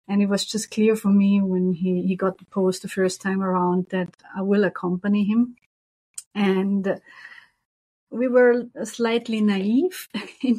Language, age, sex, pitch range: English, 30-49, female, 190-220 Hz